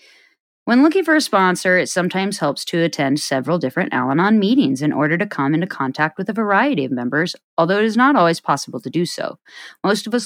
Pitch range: 145-210 Hz